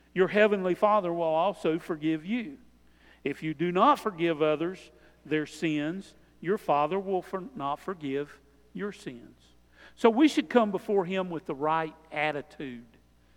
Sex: male